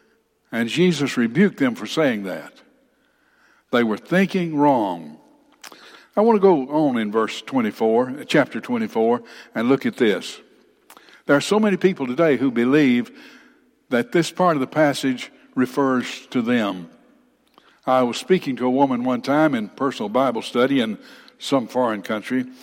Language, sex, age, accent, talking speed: English, male, 60-79, American, 155 wpm